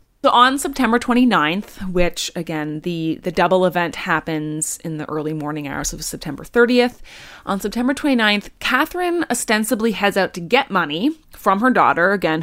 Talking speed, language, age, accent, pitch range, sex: 160 wpm, English, 30-49, American, 165-240 Hz, female